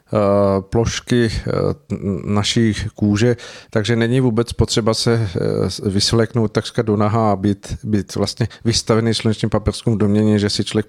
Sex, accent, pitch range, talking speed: male, native, 105-115 Hz, 125 wpm